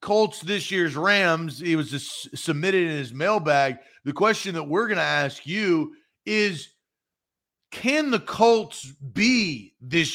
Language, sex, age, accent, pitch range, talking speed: English, male, 40-59, American, 150-215 Hz, 140 wpm